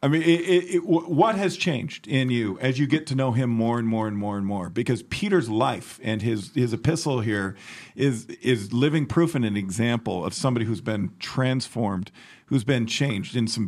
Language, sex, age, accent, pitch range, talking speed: English, male, 40-59, American, 115-160 Hz, 210 wpm